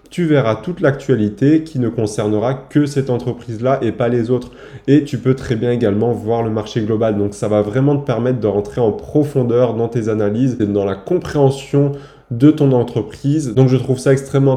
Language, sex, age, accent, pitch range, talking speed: French, male, 20-39, French, 110-135 Hz, 200 wpm